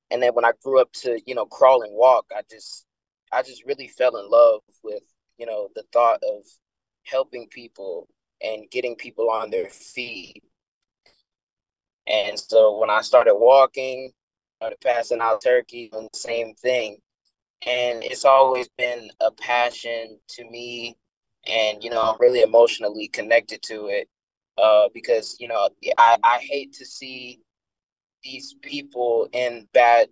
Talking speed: 155 wpm